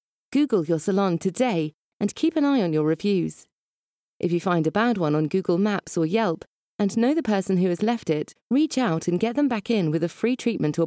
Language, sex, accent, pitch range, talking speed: English, female, British, 165-235 Hz, 230 wpm